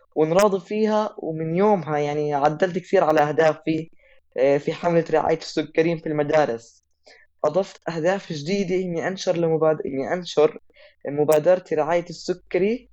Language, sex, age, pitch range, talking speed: Arabic, female, 20-39, 160-200 Hz, 120 wpm